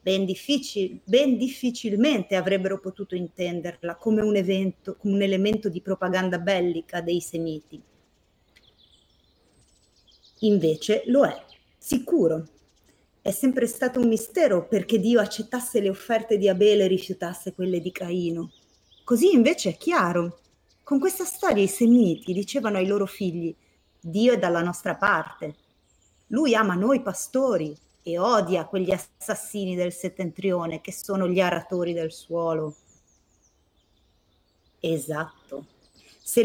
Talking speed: 115 wpm